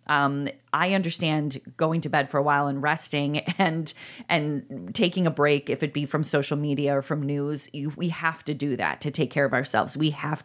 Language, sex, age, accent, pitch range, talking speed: English, female, 30-49, American, 140-170 Hz, 220 wpm